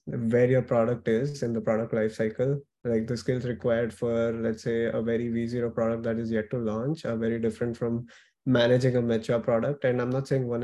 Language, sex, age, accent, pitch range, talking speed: English, male, 20-39, Indian, 115-135 Hz, 215 wpm